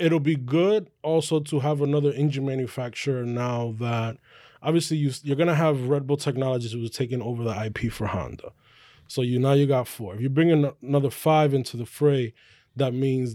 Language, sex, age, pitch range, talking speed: English, male, 20-39, 120-145 Hz, 200 wpm